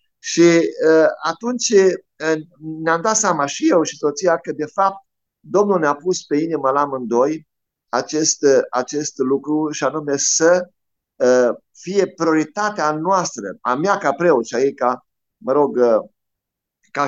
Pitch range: 145-205 Hz